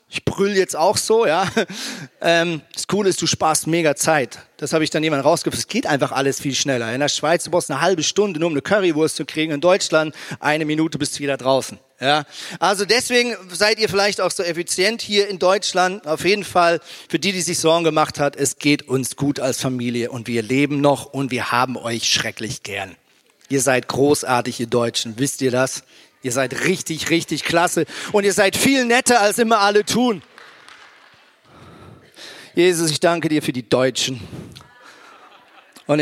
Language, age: German, 40-59